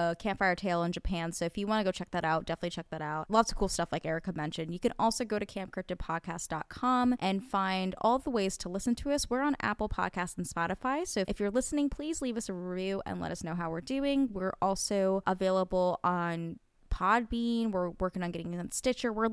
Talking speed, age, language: 225 wpm, 20-39, English